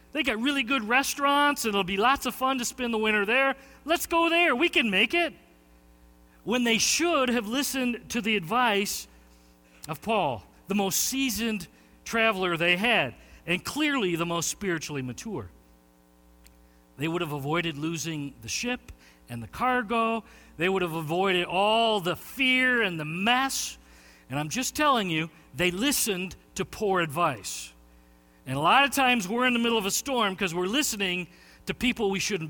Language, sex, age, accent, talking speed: English, male, 50-69, American, 175 wpm